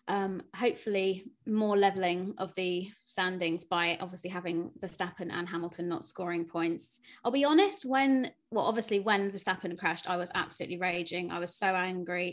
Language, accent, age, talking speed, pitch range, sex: English, British, 20-39, 160 wpm, 185-220 Hz, female